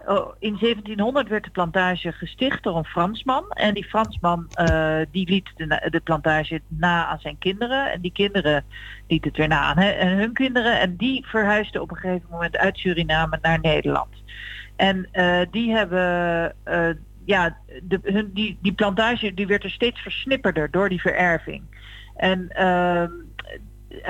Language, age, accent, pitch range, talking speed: English, 50-69, Dutch, 165-210 Hz, 165 wpm